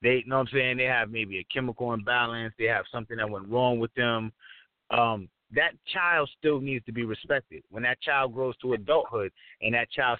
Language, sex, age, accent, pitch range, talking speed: English, male, 30-49, American, 125-180 Hz, 220 wpm